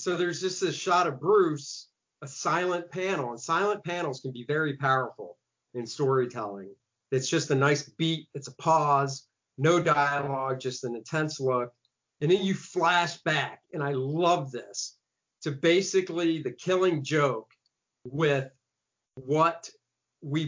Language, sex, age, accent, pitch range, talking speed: English, male, 40-59, American, 130-165 Hz, 145 wpm